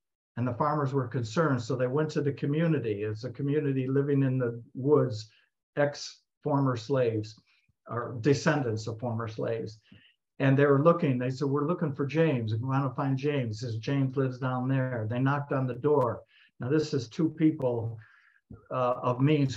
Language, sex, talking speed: English, male, 185 wpm